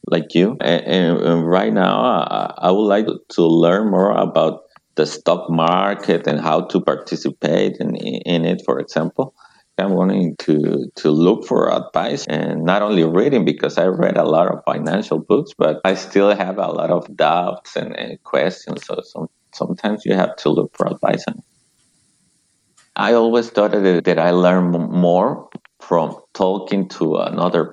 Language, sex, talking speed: English, male, 165 wpm